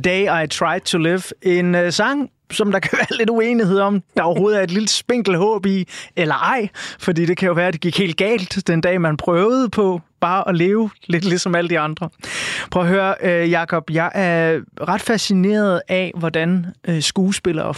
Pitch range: 155-190 Hz